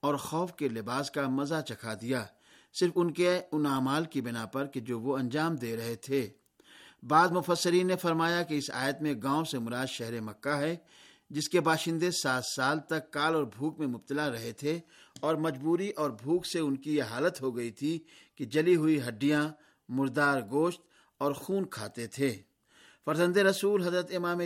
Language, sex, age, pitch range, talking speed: Urdu, male, 50-69, 135-170 Hz, 185 wpm